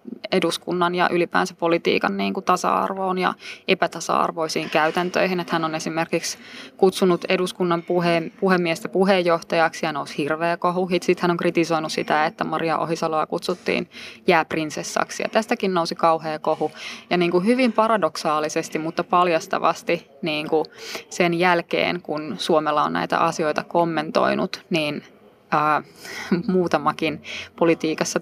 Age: 20-39